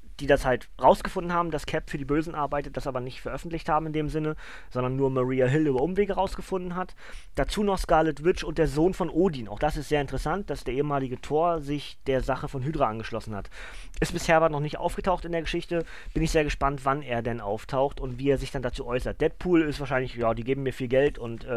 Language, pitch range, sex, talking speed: German, 125-155 Hz, male, 240 wpm